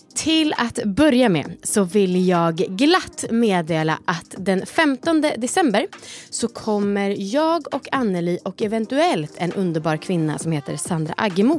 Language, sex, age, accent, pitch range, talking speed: English, female, 30-49, Swedish, 160-230 Hz, 140 wpm